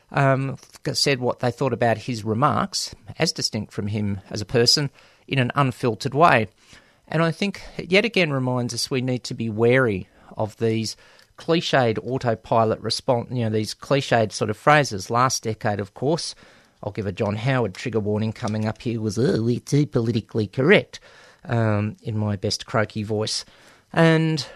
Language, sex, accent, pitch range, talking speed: English, male, Australian, 110-135 Hz, 170 wpm